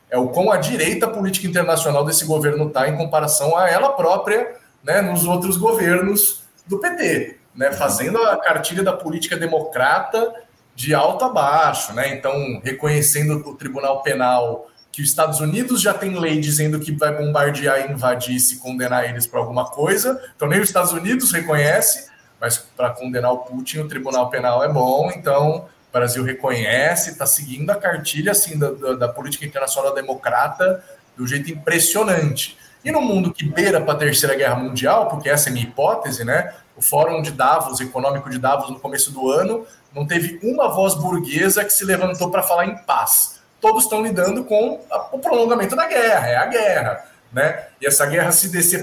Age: 20-39